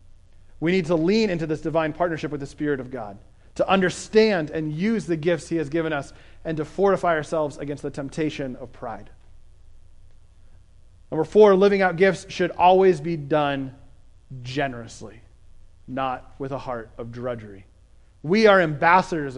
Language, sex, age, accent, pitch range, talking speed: English, male, 30-49, American, 100-170 Hz, 160 wpm